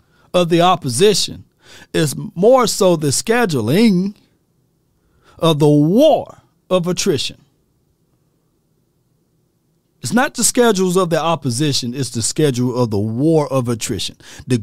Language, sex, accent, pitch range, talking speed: English, male, American, 110-155 Hz, 120 wpm